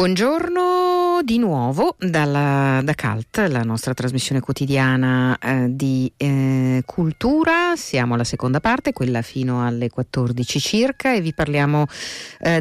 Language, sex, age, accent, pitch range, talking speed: Italian, female, 50-69, native, 125-155 Hz, 120 wpm